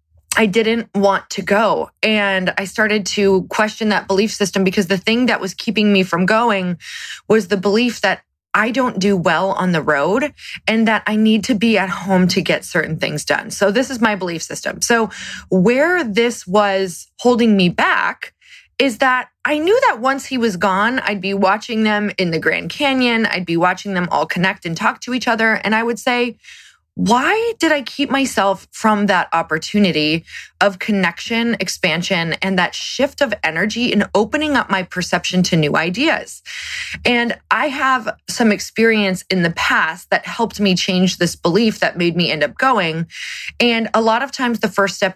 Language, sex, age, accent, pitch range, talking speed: English, female, 20-39, American, 180-230 Hz, 190 wpm